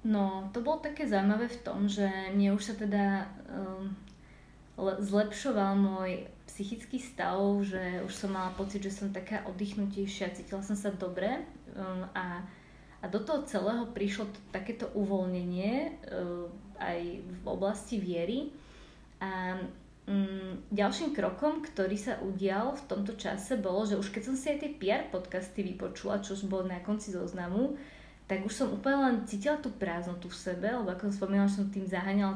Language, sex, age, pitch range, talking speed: Slovak, female, 20-39, 185-215 Hz, 160 wpm